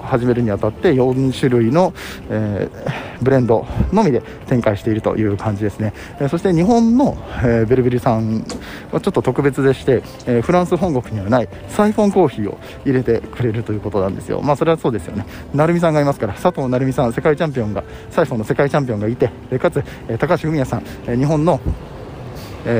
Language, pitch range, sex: Japanese, 110-145 Hz, male